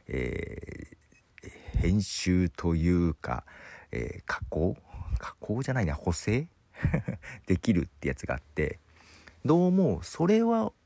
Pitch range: 85-120 Hz